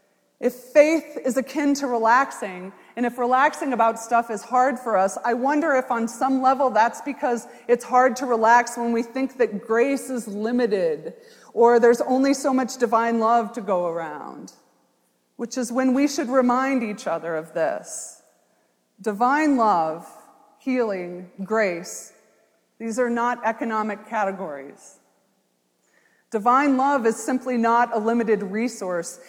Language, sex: English, female